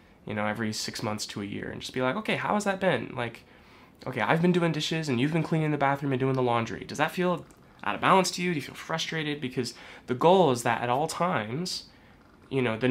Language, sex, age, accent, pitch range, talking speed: English, male, 20-39, American, 115-150 Hz, 260 wpm